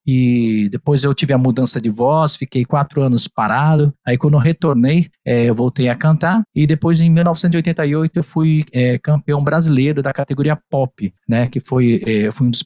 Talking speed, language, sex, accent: 195 wpm, Portuguese, male, Brazilian